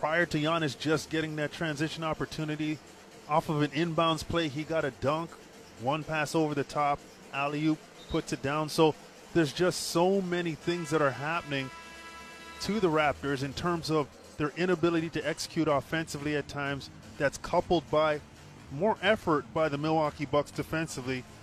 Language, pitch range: English, 140-165 Hz